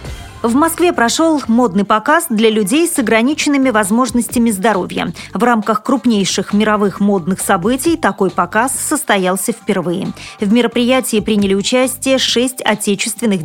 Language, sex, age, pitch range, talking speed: Russian, female, 30-49, 205-255 Hz, 120 wpm